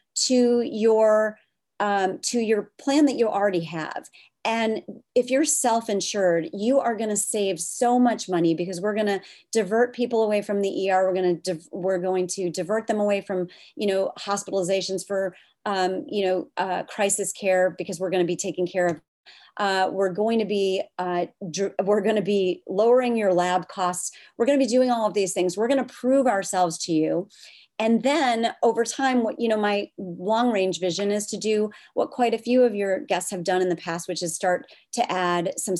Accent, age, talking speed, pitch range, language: American, 40-59, 210 wpm, 180-225 Hz, English